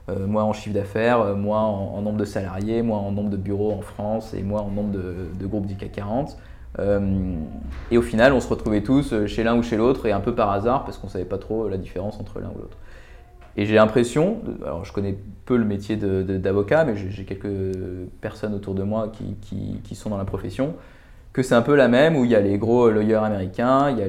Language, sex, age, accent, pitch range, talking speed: French, male, 20-39, French, 100-115 Hz, 255 wpm